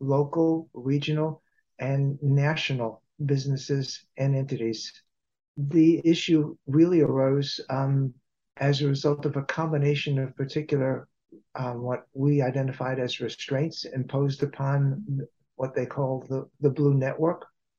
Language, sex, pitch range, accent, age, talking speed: English, male, 135-155 Hz, American, 60-79, 120 wpm